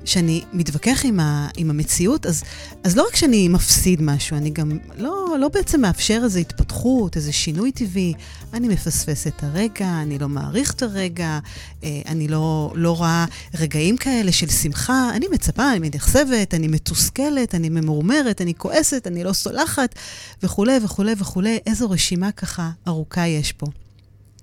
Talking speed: 155 wpm